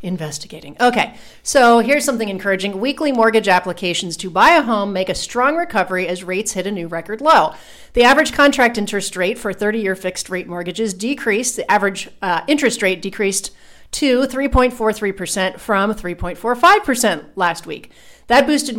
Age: 40-59